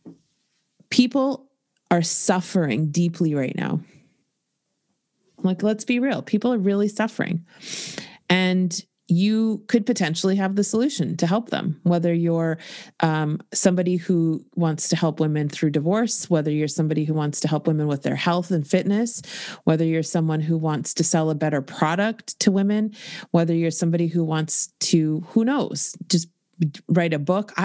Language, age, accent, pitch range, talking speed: English, 30-49, American, 165-210 Hz, 155 wpm